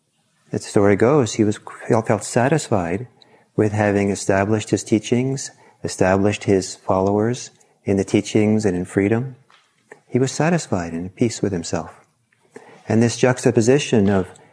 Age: 40-59